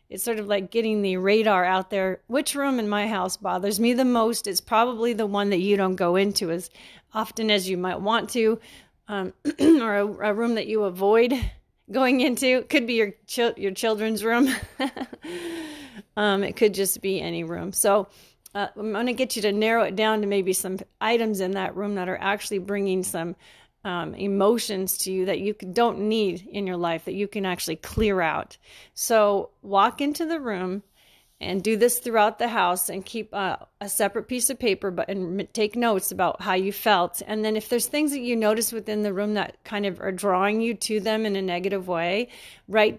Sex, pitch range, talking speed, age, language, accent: female, 195-230 Hz, 205 wpm, 30-49, English, American